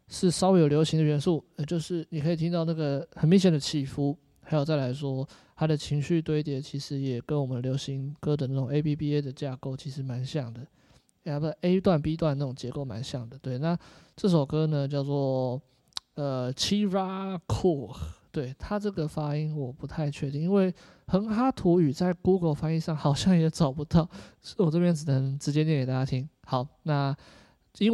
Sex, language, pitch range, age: male, Chinese, 135-165 Hz, 20-39